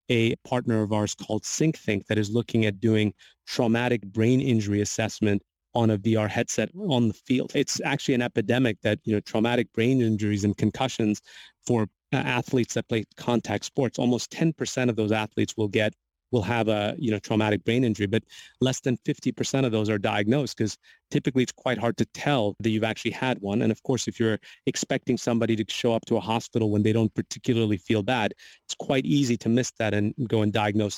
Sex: male